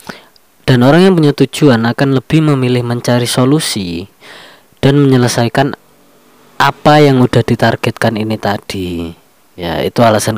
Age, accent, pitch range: 20-39, native, 105-125 Hz